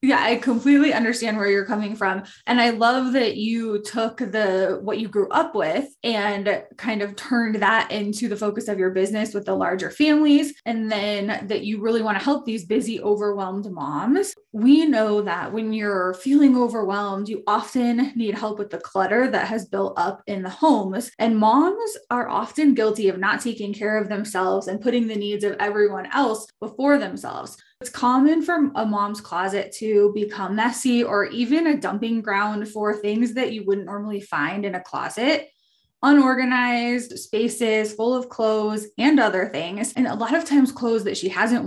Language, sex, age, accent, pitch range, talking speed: English, female, 20-39, American, 205-245 Hz, 185 wpm